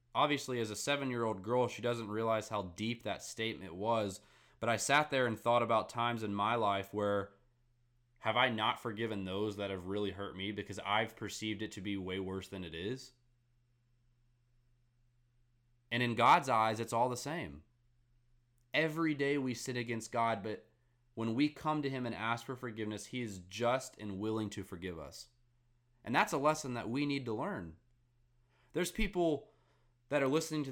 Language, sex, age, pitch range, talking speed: English, male, 20-39, 110-125 Hz, 180 wpm